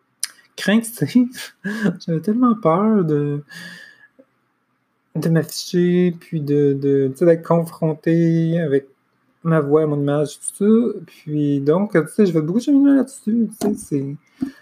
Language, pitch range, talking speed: French, 140-175 Hz, 130 wpm